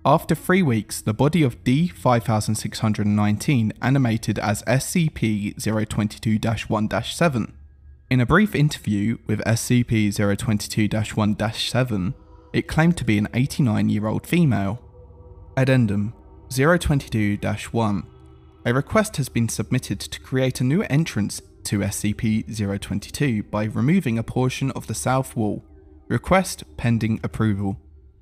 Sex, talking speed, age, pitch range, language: male, 125 wpm, 20-39, 105-130 Hz, English